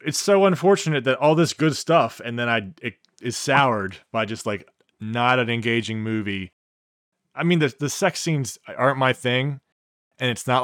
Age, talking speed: 20-39, 185 wpm